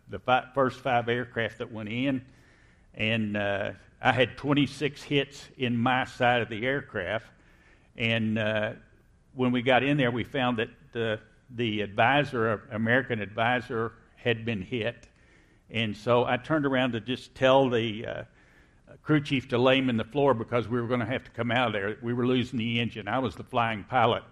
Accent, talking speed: American, 190 wpm